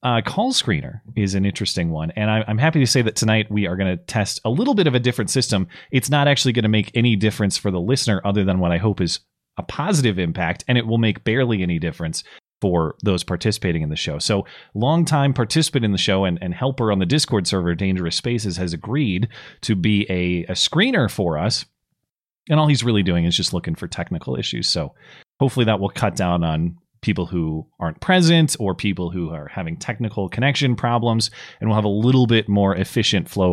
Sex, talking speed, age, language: male, 220 wpm, 30-49, English